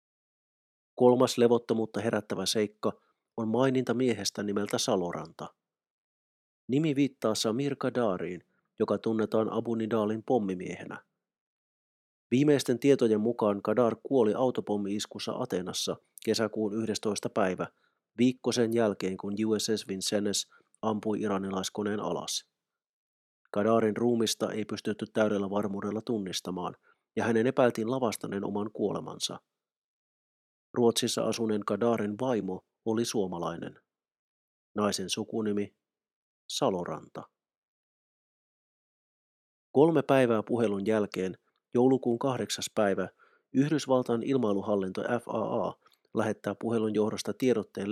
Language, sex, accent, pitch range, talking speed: Finnish, male, native, 105-120 Hz, 95 wpm